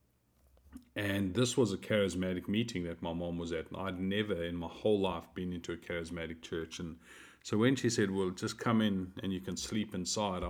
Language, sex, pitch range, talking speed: English, male, 90-105 Hz, 205 wpm